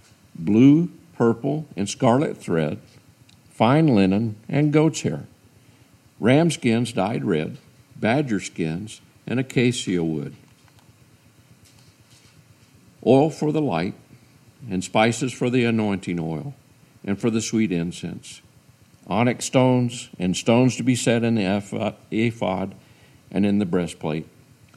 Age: 50-69